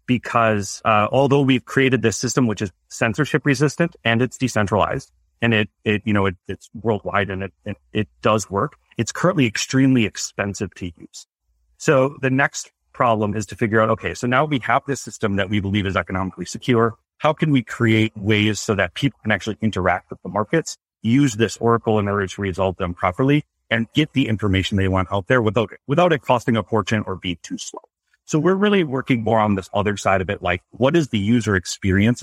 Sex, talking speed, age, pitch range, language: male, 210 wpm, 30-49, 100-125 Hz, English